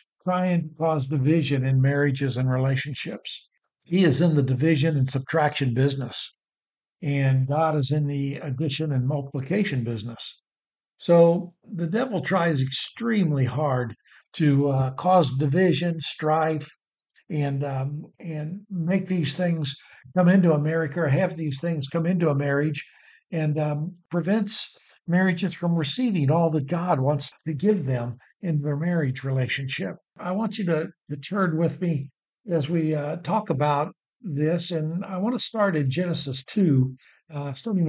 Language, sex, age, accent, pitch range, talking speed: English, male, 60-79, American, 145-180 Hz, 150 wpm